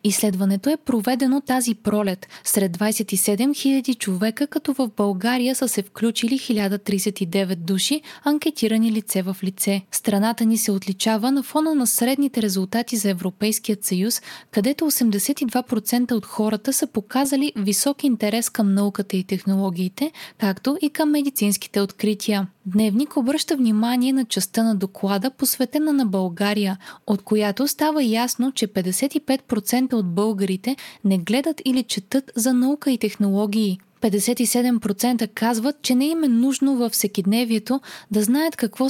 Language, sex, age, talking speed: Bulgarian, female, 20-39, 135 wpm